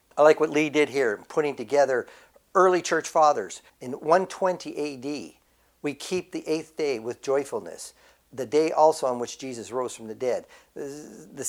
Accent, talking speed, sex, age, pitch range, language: American, 165 wpm, male, 50-69, 125-175 Hz, English